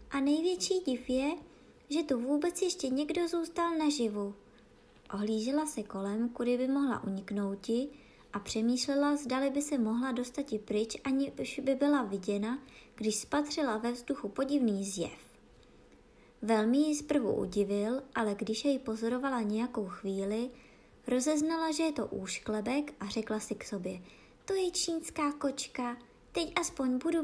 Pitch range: 215-285 Hz